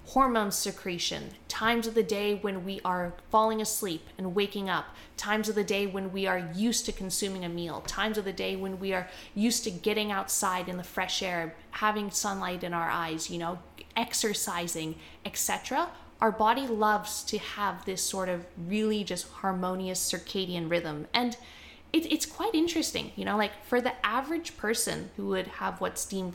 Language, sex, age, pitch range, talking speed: English, female, 20-39, 180-220 Hz, 180 wpm